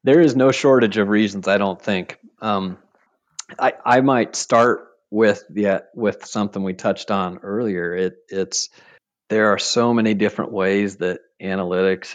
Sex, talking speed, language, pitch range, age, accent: male, 160 wpm, English, 85-100 Hz, 40-59, American